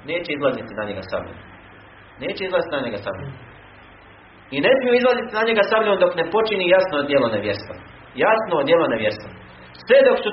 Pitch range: 140-225 Hz